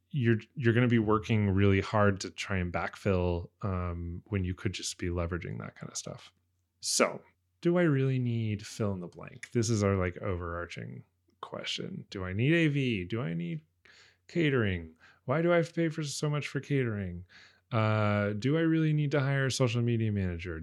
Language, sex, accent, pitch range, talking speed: English, male, American, 90-135 Hz, 195 wpm